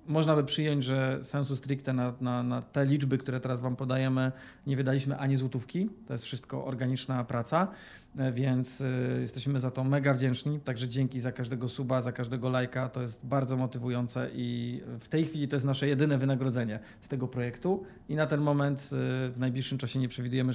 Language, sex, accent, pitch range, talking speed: Polish, male, native, 125-140 Hz, 185 wpm